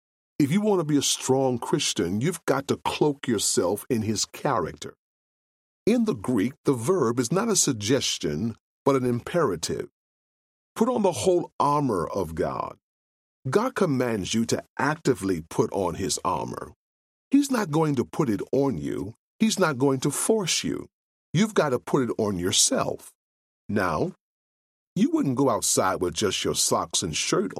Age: 40-59